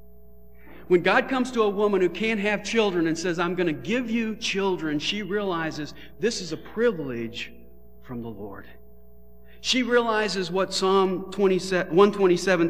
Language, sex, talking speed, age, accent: English, male, 150 wpm, 50-69, American